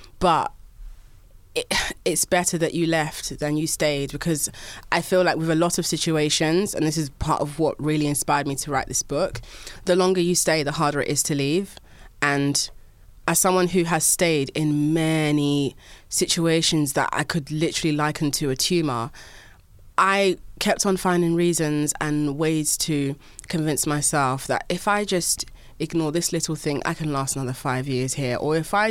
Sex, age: female, 20-39